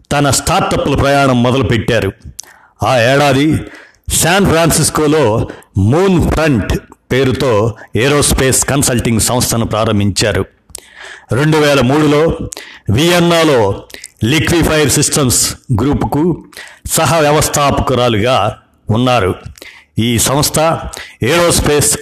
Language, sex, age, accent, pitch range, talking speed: Telugu, male, 60-79, native, 115-150 Hz, 75 wpm